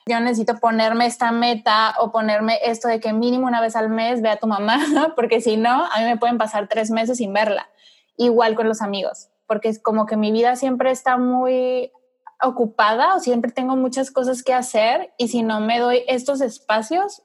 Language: Spanish